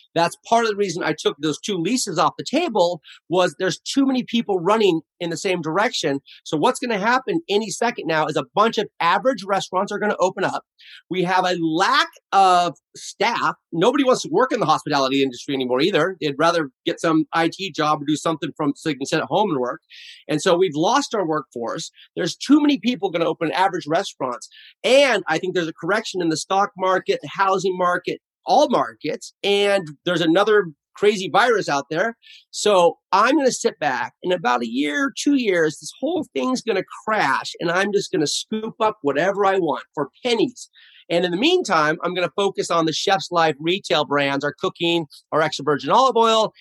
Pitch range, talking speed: 155-205 Hz, 210 wpm